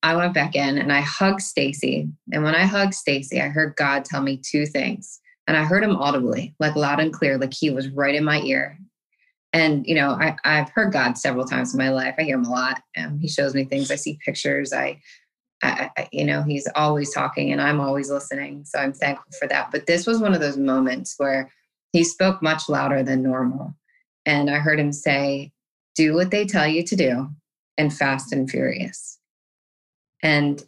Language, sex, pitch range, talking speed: English, female, 135-160 Hz, 210 wpm